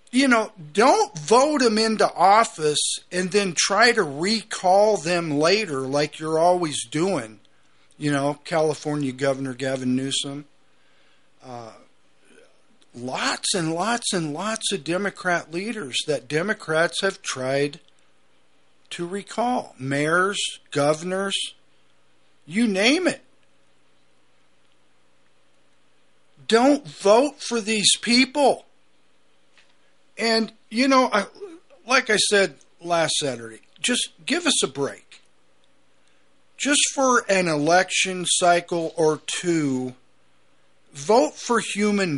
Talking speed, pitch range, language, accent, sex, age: 100 wpm, 150-215 Hz, English, American, male, 50-69